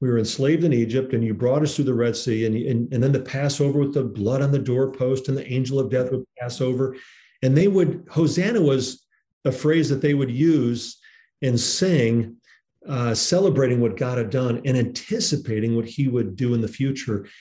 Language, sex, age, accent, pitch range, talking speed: English, male, 40-59, American, 115-150 Hz, 210 wpm